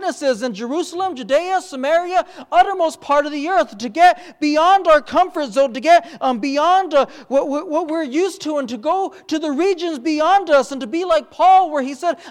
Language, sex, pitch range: English, male, 255-330 Hz